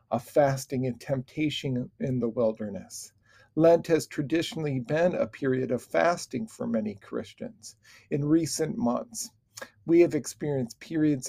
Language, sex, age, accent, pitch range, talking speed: English, male, 50-69, American, 125-160 Hz, 135 wpm